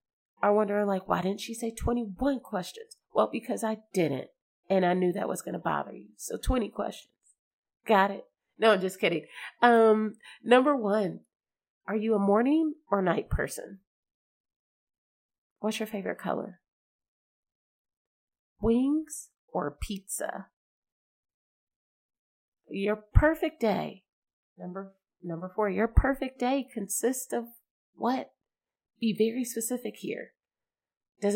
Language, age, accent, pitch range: English, 30-49, American, 195-235 Hz